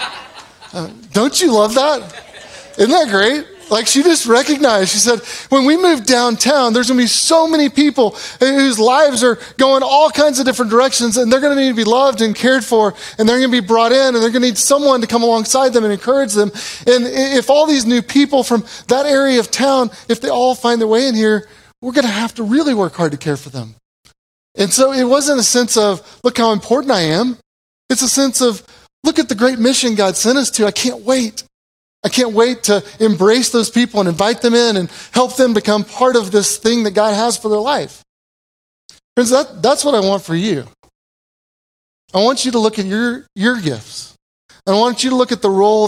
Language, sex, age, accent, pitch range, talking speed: English, male, 30-49, American, 210-260 Hz, 225 wpm